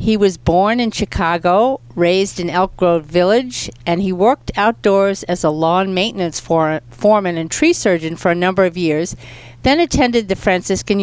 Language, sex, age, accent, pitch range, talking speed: English, female, 60-79, American, 155-195 Hz, 170 wpm